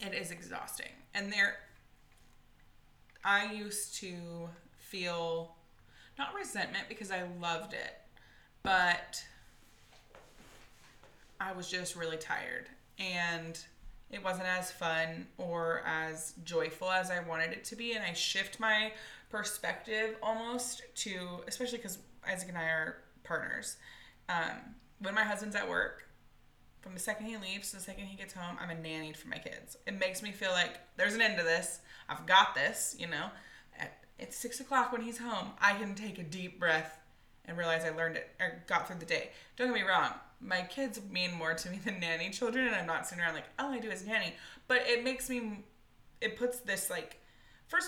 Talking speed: 180 wpm